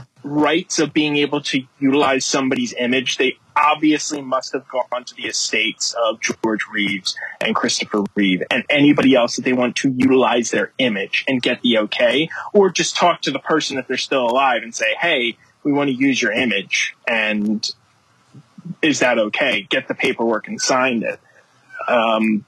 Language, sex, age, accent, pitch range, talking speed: English, male, 20-39, American, 140-195 Hz, 175 wpm